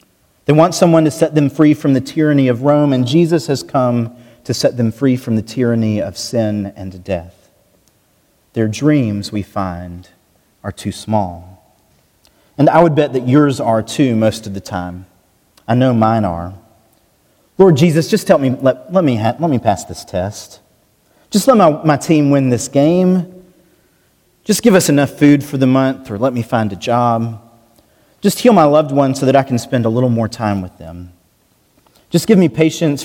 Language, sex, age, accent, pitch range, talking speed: English, male, 30-49, American, 110-150 Hz, 190 wpm